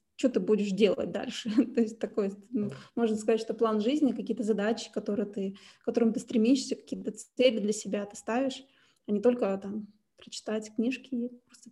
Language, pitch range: Russian, 220-250 Hz